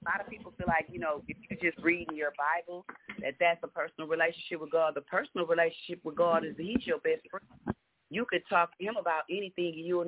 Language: English